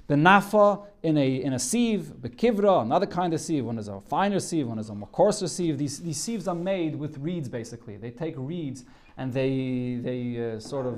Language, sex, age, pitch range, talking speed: English, male, 30-49, 140-190 Hz, 225 wpm